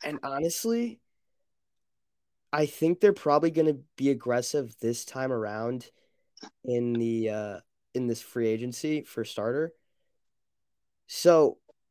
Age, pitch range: 20-39, 110-145 Hz